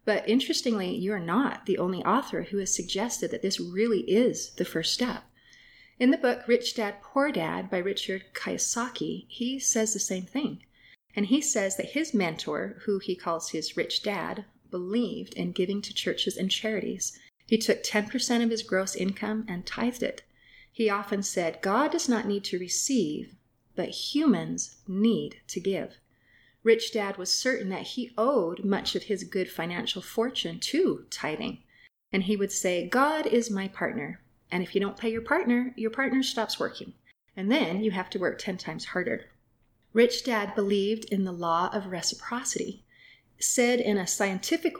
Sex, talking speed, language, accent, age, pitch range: female, 175 wpm, English, American, 30-49, 190-235 Hz